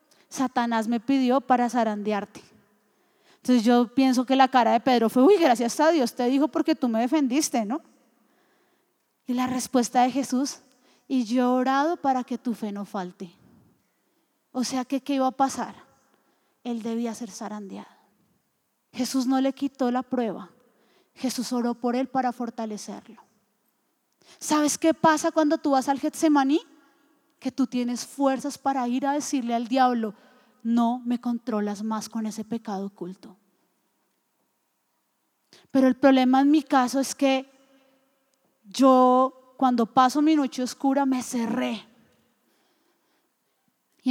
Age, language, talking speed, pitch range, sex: 30-49, Spanish, 145 wpm, 240-285 Hz, female